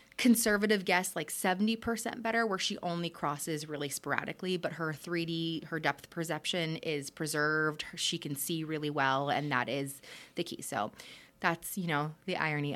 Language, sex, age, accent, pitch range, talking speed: English, female, 20-39, American, 155-190 Hz, 170 wpm